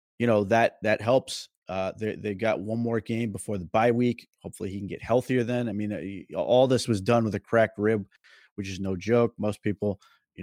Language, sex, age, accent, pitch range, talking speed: English, male, 30-49, American, 100-115 Hz, 225 wpm